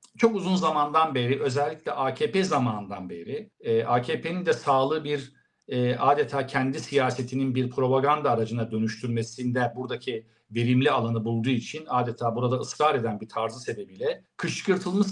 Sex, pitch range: male, 120-185 Hz